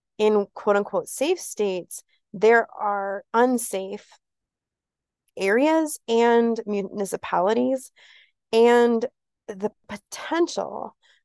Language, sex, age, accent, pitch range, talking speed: English, female, 30-49, American, 170-215 Hz, 75 wpm